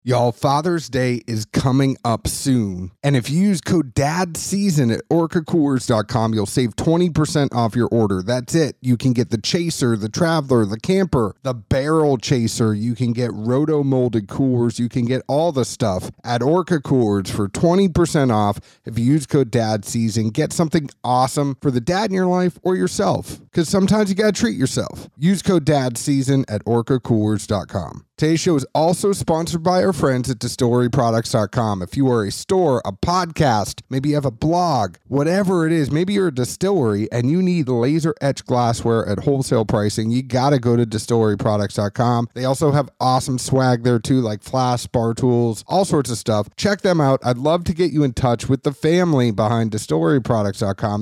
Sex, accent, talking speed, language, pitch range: male, American, 180 wpm, English, 115-160 Hz